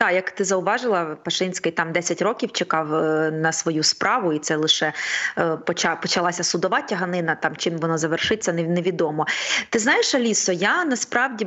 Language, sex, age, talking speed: Ukrainian, female, 20-39, 155 wpm